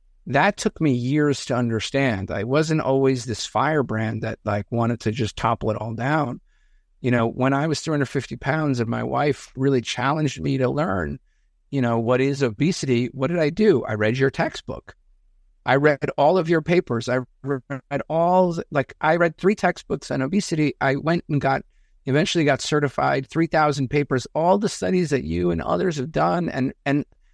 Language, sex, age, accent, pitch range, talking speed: English, male, 50-69, American, 115-150 Hz, 185 wpm